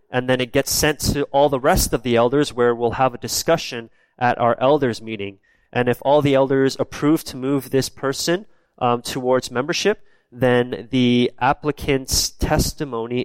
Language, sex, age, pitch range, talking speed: English, male, 20-39, 120-140 Hz, 170 wpm